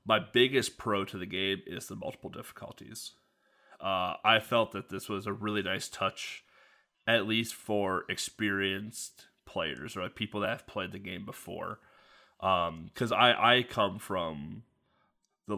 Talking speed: 160 wpm